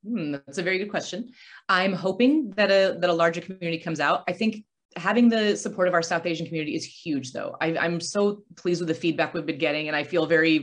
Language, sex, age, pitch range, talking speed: English, female, 30-49, 165-215 Hz, 245 wpm